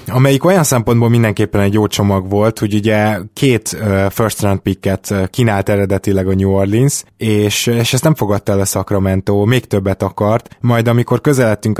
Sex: male